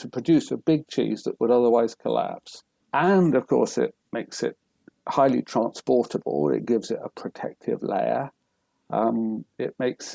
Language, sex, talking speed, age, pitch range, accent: English, male, 155 wpm, 50-69, 115-180 Hz, British